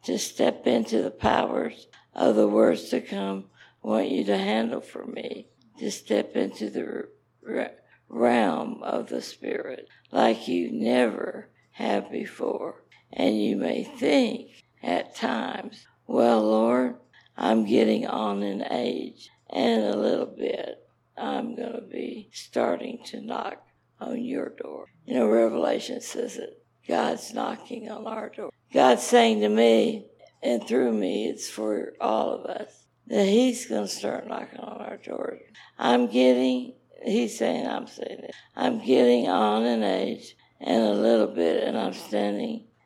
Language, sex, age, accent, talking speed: English, female, 60-79, American, 150 wpm